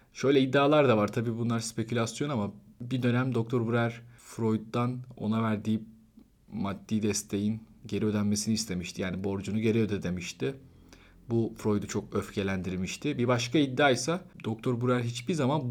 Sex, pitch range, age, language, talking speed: male, 105-125 Hz, 40-59, Turkish, 140 wpm